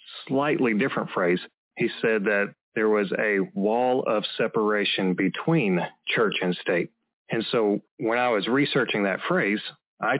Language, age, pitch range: English, 40-59, 95-120 Hz